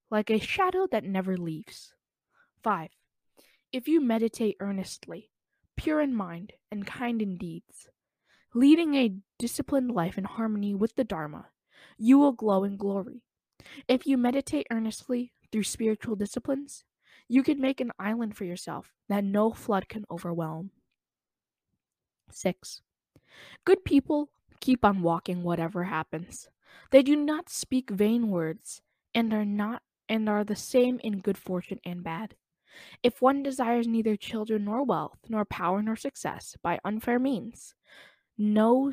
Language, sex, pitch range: English, female, 190-250 Hz